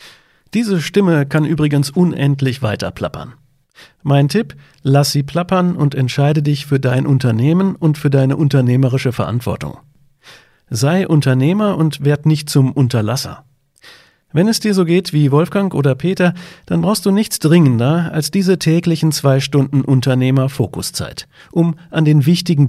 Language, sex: German, male